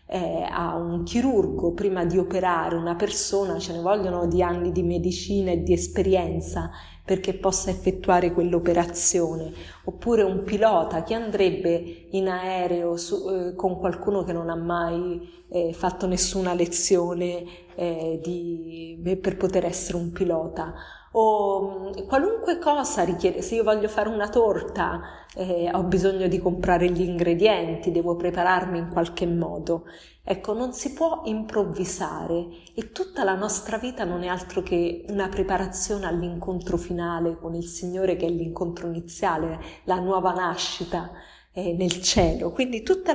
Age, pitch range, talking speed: 20-39, 175-200 Hz, 140 wpm